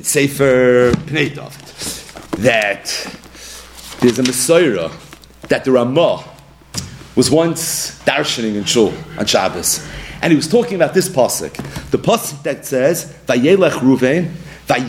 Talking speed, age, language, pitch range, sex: 110 wpm, 40-59, English, 130-195 Hz, male